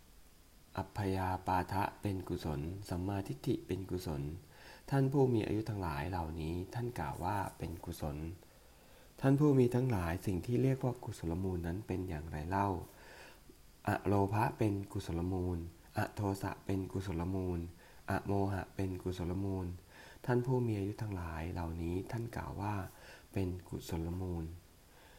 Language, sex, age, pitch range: English, male, 20-39, 85-105 Hz